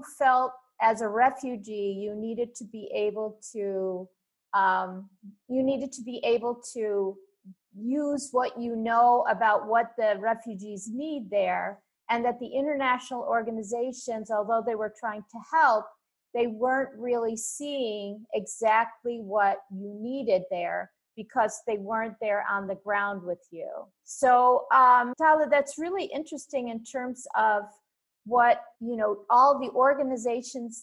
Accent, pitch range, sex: American, 205-255 Hz, female